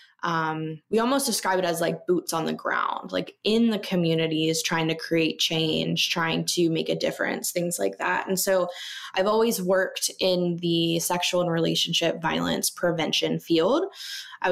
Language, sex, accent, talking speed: English, female, American, 170 wpm